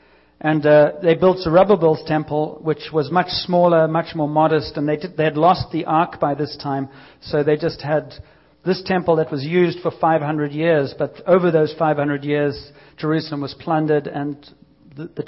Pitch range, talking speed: 145-170 Hz, 180 wpm